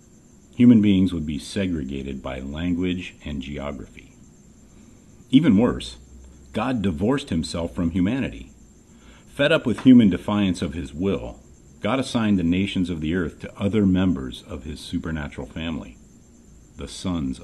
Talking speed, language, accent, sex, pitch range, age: 140 wpm, English, American, male, 75-100 Hz, 50-69